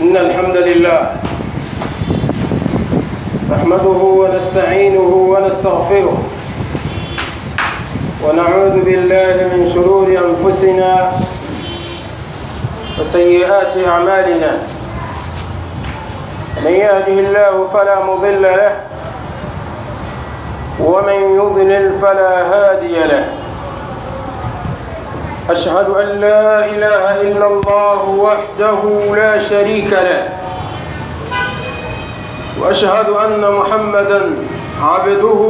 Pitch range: 185-215 Hz